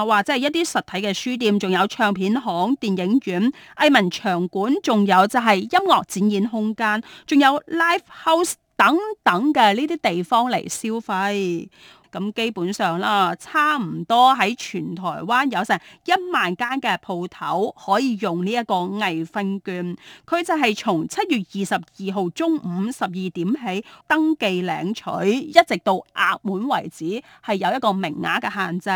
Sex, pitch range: female, 180-255 Hz